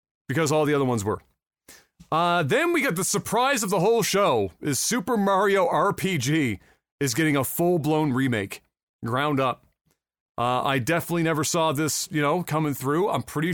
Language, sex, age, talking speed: English, male, 40-59, 175 wpm